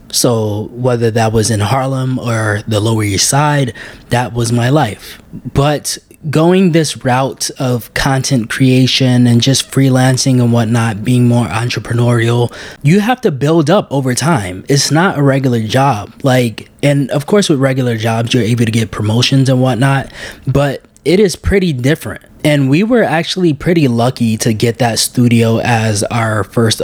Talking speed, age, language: 165 wpm, 20-39, English